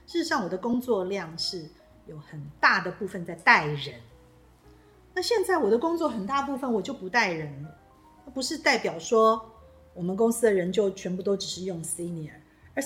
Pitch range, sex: 170-240 Hz, female